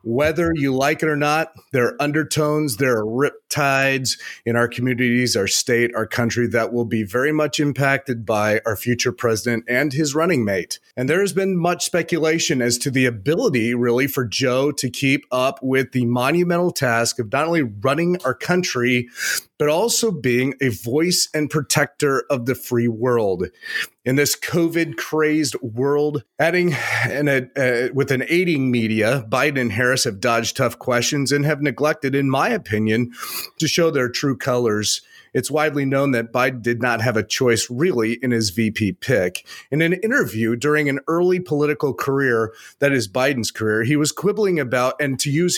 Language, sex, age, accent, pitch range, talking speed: English, male, 30-49, American, 120-155 Hz, 175 wpm